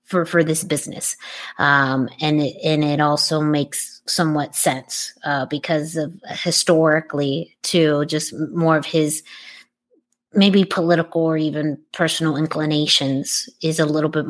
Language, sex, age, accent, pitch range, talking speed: English, female, 30-49, American, 155-200 Hz, 130 wpm